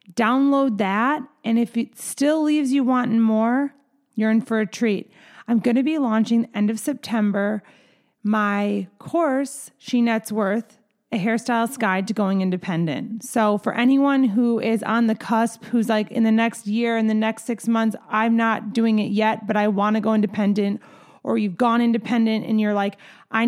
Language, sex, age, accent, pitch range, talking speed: English, female, 30-49, American, 205-240 Hz, 185 wpm